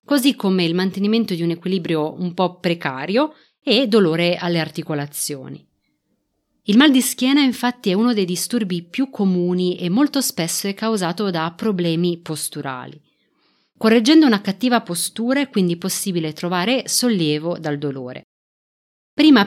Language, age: Italian, 30-49